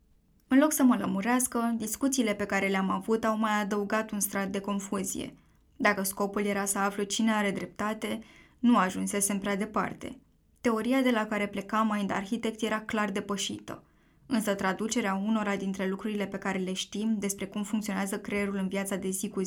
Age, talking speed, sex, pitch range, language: 10-29, 180 wpm, female, 200-230 Hz, Romanian